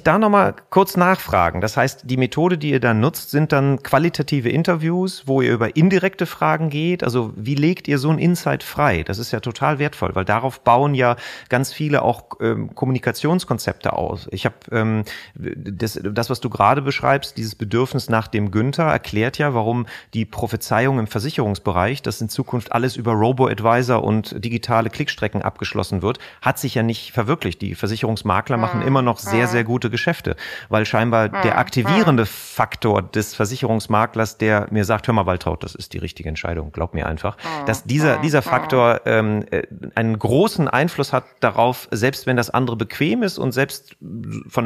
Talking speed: 175 wpm